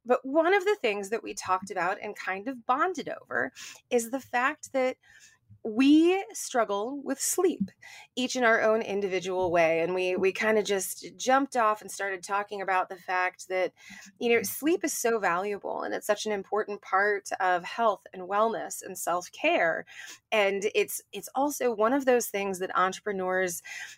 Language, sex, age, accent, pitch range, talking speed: English, female, 20-39, American, 190-265 Hz, 180 wpm